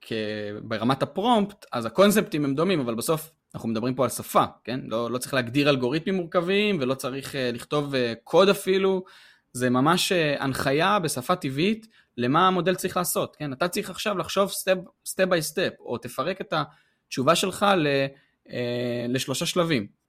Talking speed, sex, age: 150 wpm, male, 20-39